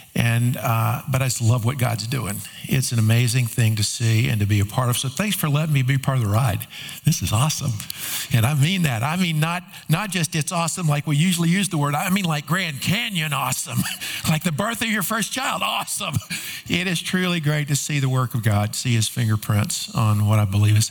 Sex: male